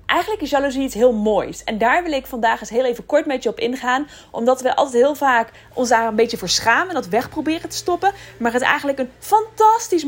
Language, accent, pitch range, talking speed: Dutch, Dutch, 225-305 Hz, 240 wpm